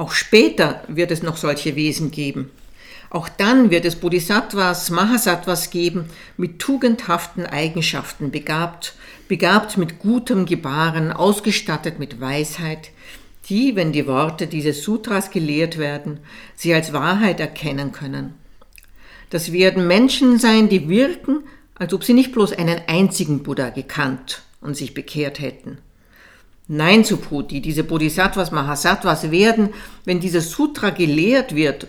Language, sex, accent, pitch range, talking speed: German, female, Austrian, 155-205 Hz, 130 wpm